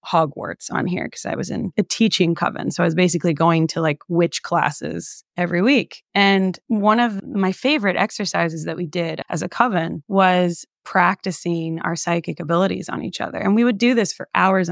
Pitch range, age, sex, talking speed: 170-195 Hz, 20-39, female, 195 wpm